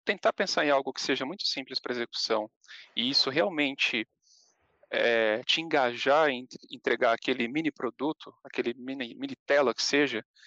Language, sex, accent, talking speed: Portuguese, male, Brazilian, 155 wpm